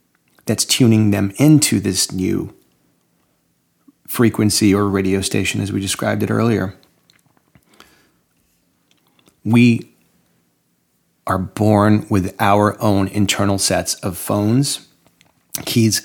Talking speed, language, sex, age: 95 wpm, English, male, 40-59